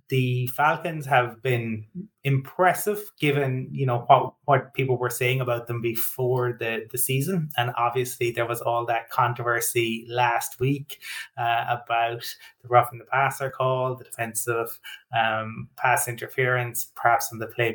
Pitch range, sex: 115-130 Hz, male